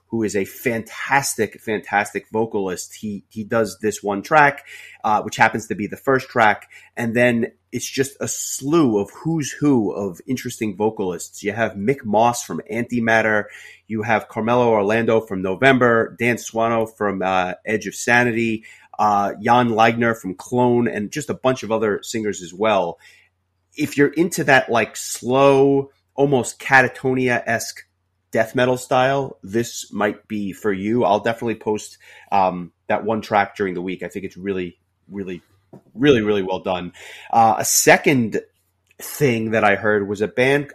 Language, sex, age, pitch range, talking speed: English, male, 30-49, 100-125 Hz, 165 wpm